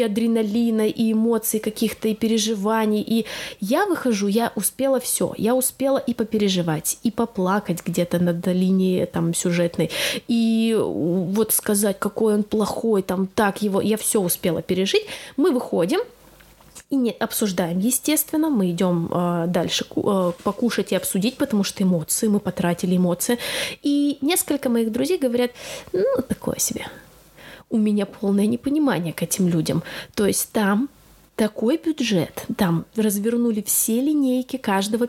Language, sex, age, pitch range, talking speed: Russian, female, 20-39, 195-255 Hz, 135 wpm